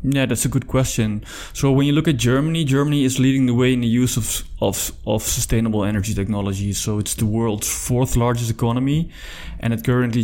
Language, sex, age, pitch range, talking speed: English, male, 20-39, 110-130 Hz, 205 wpm